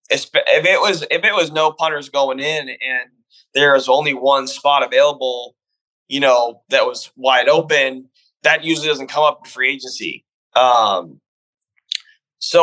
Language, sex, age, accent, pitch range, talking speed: English, male, 20-39, American, 130-155 Hz, 155 wpm